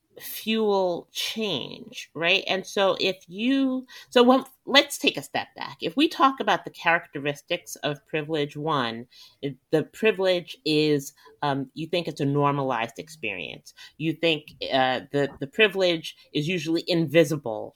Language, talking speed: English, 140 wpm